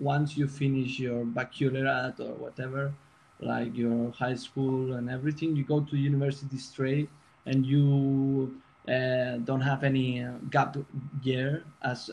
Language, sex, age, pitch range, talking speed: English, male, 20-39, 130-150 Hz, 135 wpm